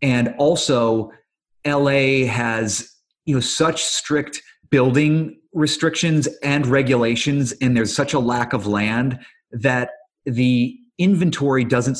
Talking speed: 115 wpm